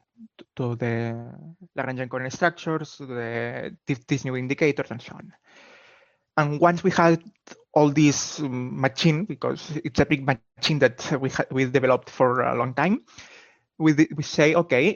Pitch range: 130-155 Hz